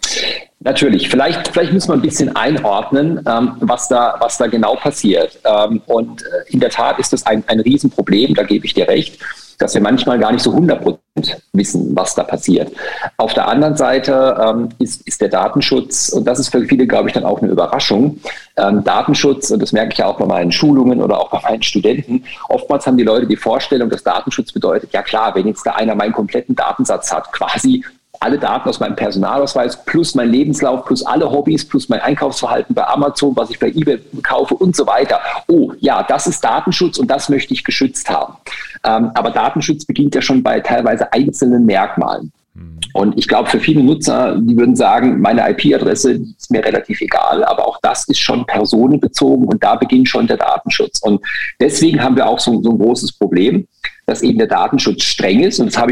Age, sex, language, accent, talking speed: 40-59, male, German, German, 195 wpm